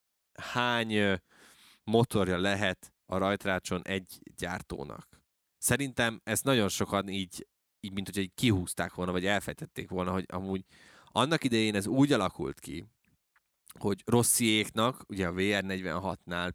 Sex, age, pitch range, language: male, 20-39, 90-115 Hz, Hungarian